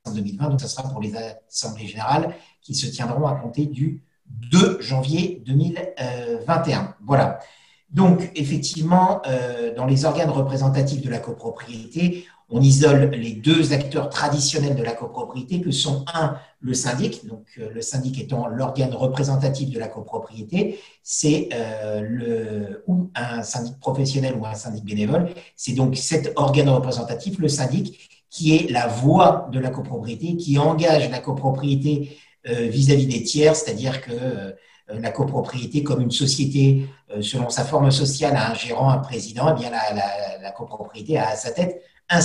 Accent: French